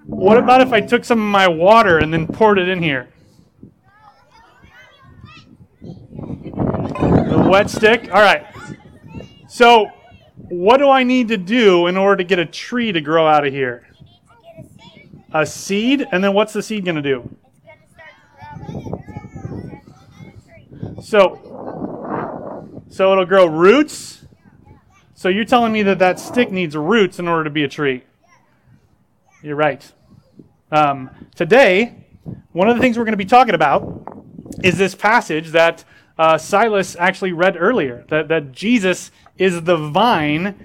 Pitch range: 165-215 Hz